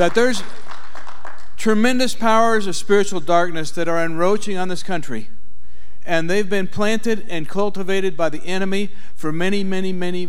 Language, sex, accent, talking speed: English, male, American, 150 wpm